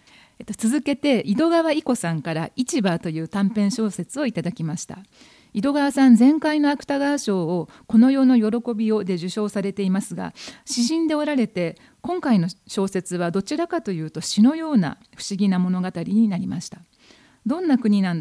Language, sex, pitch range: Japanese, female, 180-260 Hz